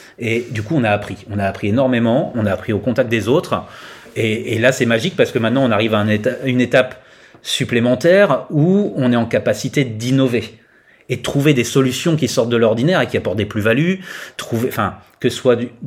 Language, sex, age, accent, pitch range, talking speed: French, male, 30-49, French, 110-135 Hz, 215 wpm